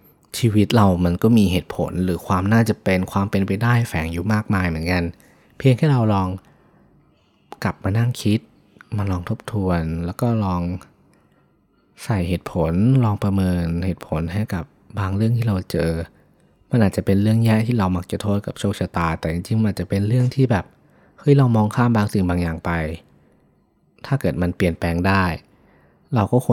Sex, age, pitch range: male, 20-39, 90-110 Hz